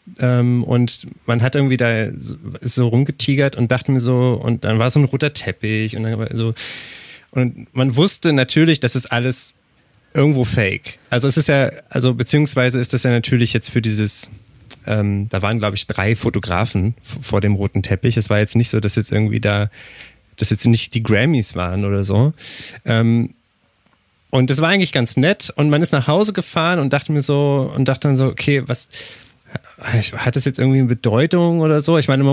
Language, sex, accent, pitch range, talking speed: German, male, German, 115-140 Hz, 205 wpm